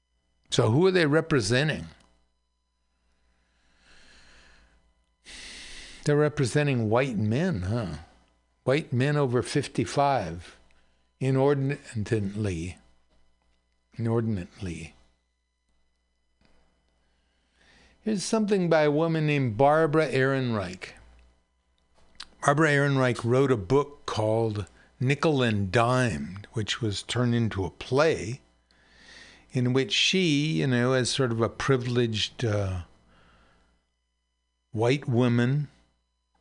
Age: 60-79